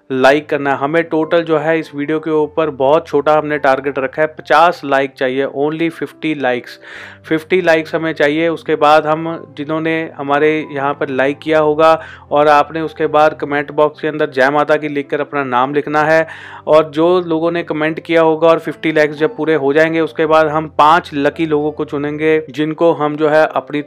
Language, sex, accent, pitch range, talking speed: Hindi, male, native, 135-155 Hz, 200 wpm